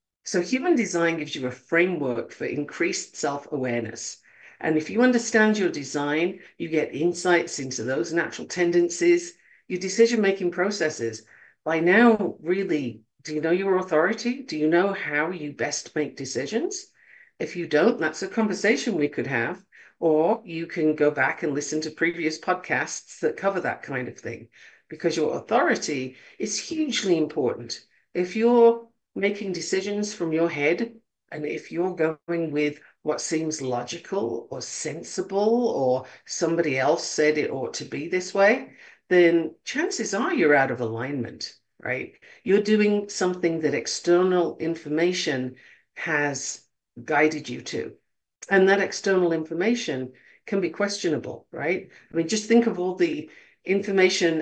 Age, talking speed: 50-69, 150 wpm